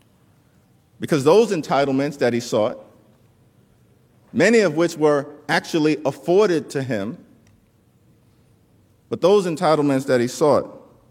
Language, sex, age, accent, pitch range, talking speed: English, male, 50-69, American, 135-180 Hz, 110 wpm